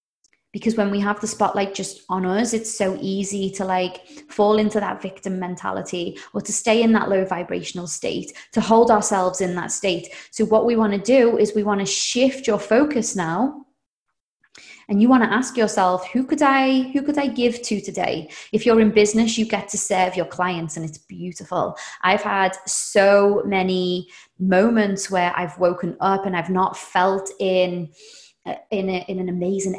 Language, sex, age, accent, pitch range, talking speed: English, female, 20-39, British, 180-220 Hz, 185 wpm